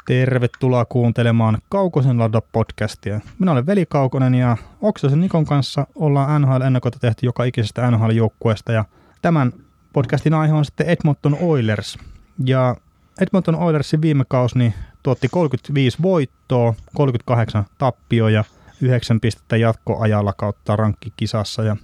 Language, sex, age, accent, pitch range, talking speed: Finnish, male, 30-49, native, 110-135 Hz, 125 wpm